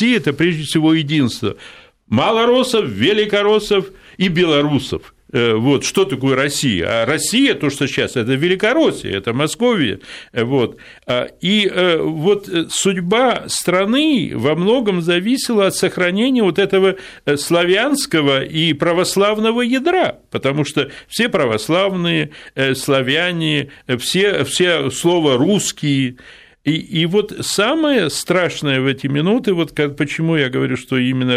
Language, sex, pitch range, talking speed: Russian, male, 140-200 Hz, 115 wpm